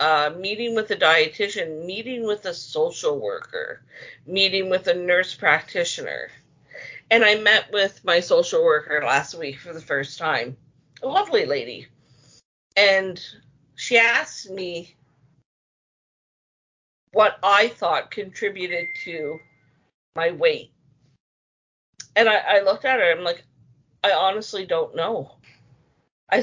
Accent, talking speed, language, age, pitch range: American, 125 wpm, English, 50-69, 160-235 Hz